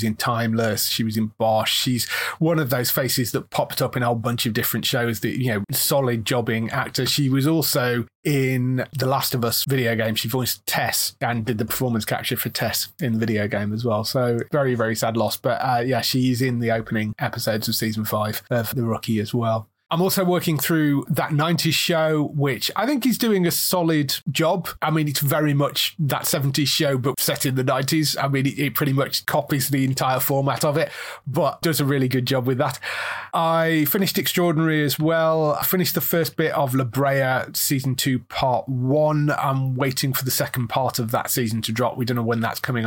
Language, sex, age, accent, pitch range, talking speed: English, male, 30-49, British, 120-150 Hz, 215 wpm